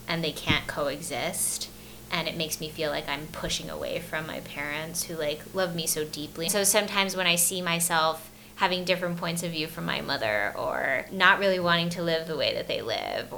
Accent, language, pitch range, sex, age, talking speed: American, English, 165-195 Hz, female, 20-39, 210 wpm